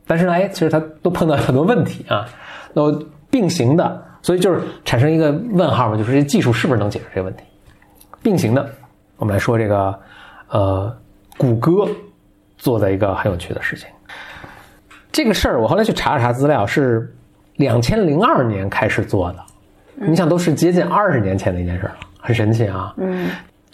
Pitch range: 105-145 Hz